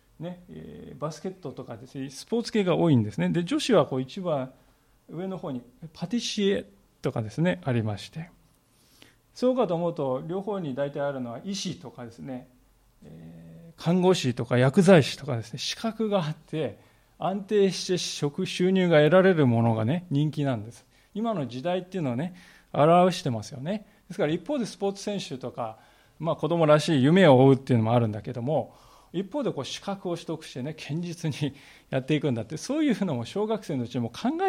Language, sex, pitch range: Japanese, male, 125-190 Hz